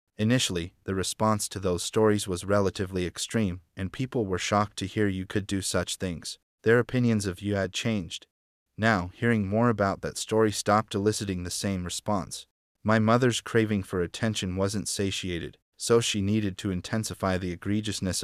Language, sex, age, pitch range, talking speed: English, male, 30-49, 95-110 Hz, 170 wpm